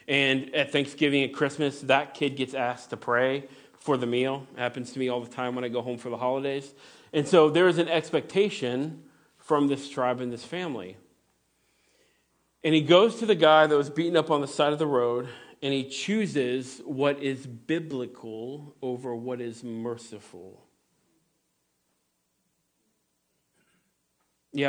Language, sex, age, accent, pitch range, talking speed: English, male, 40-59, American, 120-150 Hz, 160 wpm